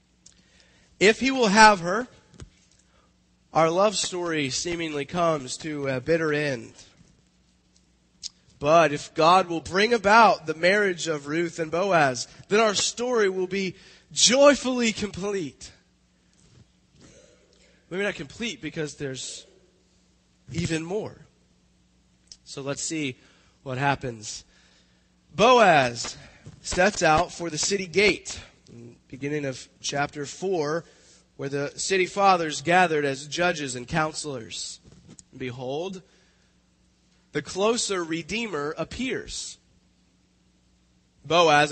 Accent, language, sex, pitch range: American, English, male, 135-190 Hz